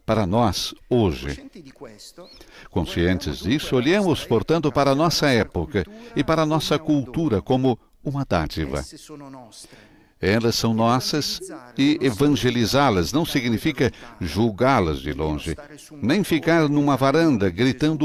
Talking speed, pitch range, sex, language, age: 115 wpm, 100-150 Hz, male, Portuguese, 60-79